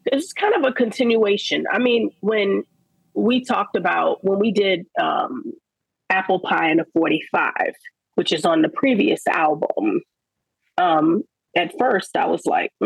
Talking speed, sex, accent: 150 wpm, female, American